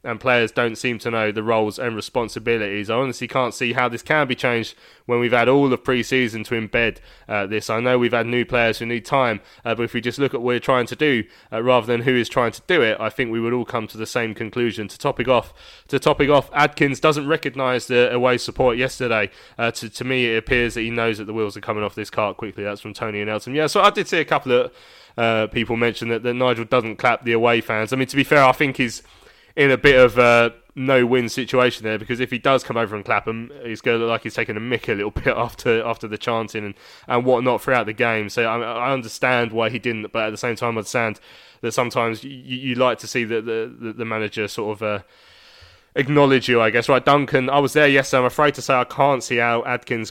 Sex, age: male, 20-39